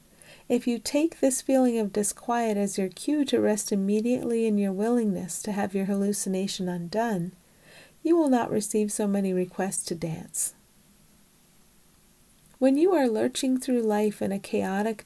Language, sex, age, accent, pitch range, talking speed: English, female, 40-59, American, 195-235 Hz, 155 wpm